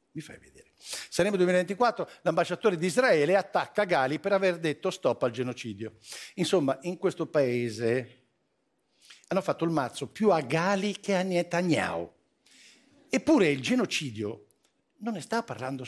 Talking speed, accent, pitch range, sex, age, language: 140 wpm, native, 130-205 Hz, male, 50-69, Italian